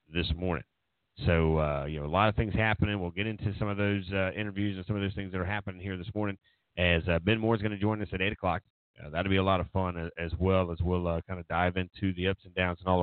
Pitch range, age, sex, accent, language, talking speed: 85-100 Hz, 30-49, male, American, English, 300 wpm